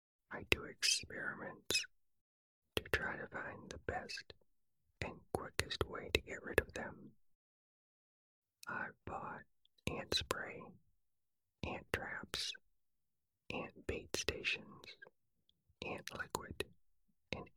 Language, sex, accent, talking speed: English, male, American, 100 wpm